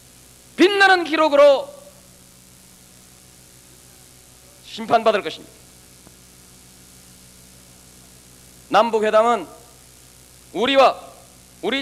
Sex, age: male, 40-59